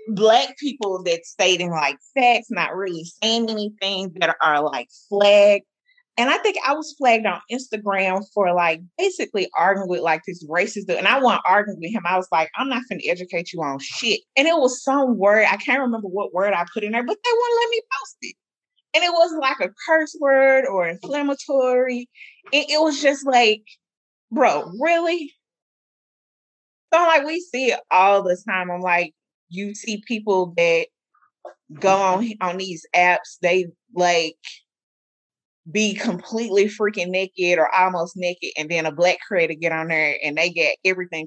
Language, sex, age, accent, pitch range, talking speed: English, female, 30-49, American, 175-245 Hz, 180 wpm